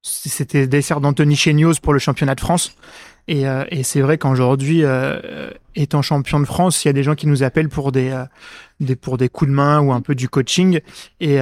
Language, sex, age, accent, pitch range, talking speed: French, male, 20-39, French, 135-155 Hz, 225 wpm